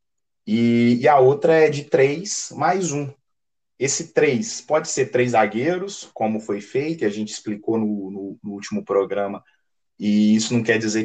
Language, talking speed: Portuguese, 165 wpm